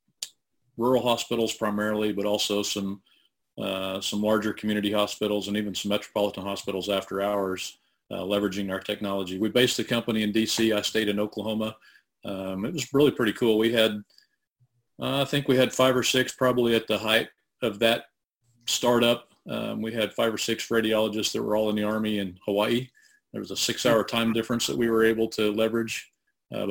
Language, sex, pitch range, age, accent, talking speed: English, male, 105-115 Hz, 40-59, American, 185 wpm